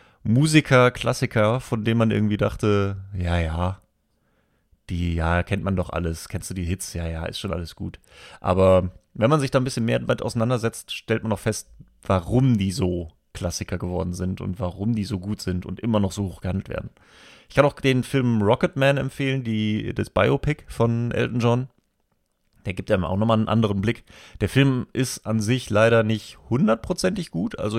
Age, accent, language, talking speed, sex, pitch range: 30-49, German, German, 195 wpm, male, 90-115 Hz